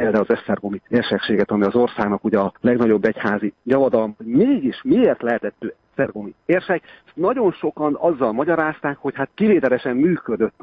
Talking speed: 140 wpm